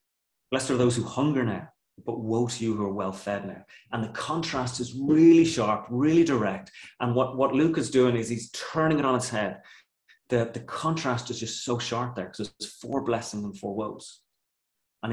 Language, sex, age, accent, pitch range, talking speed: English, male, 30-49, British, 105-130 Hz, 205 wpm